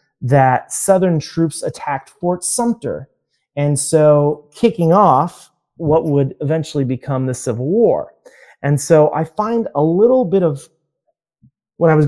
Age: 30-49